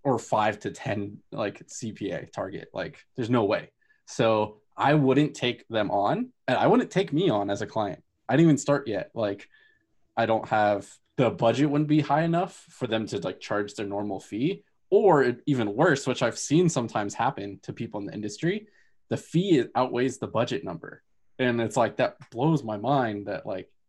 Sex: male